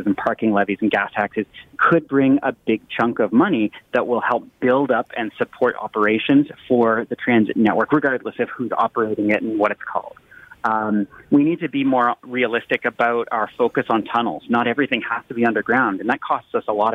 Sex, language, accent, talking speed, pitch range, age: male, English, American, 205 wpm, 110-135 Hz, 30-49